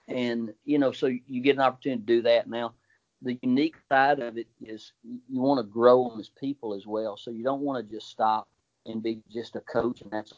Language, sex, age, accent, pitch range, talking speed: English, male, 40-59, American, 110-130 Hz, 235 wpm